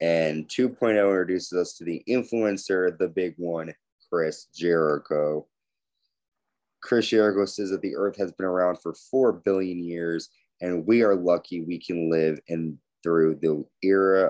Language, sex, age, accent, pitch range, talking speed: English, male, 30-49, American, 85-105 Hz, 145 wpm